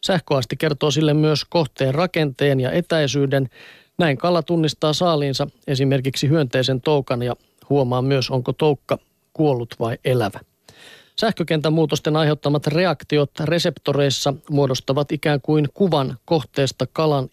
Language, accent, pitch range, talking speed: Finnish, native, 135-160 Hz, 120 wpm